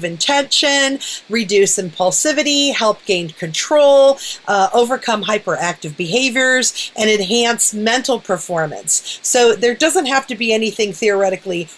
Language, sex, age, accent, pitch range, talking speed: English, female, 40-59, American, 185-240 Hz, 110 wpm